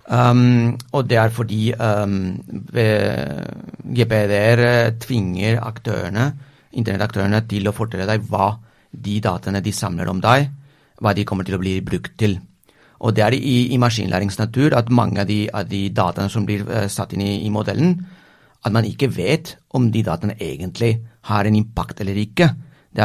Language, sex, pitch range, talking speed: English, male, 105-125 Hz, 170 wpm